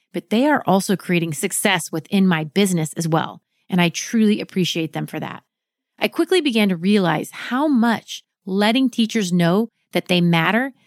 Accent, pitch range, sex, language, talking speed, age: American, 180-235 Hz, female, English, 170 wpm, 30-49